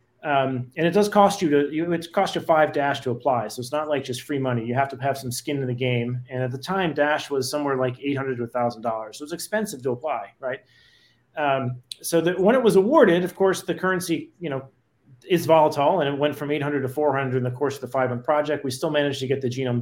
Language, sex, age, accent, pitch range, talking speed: English, male, 30-49, American, 130-165 Hz, 255 wpm